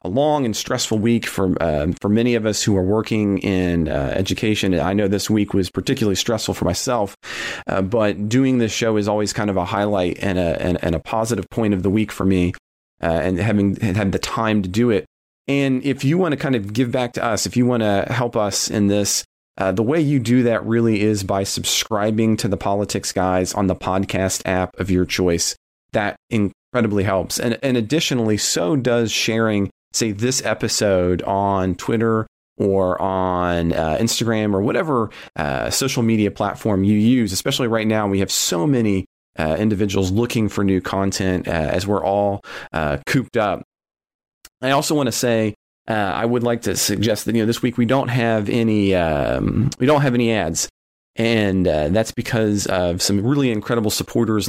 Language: English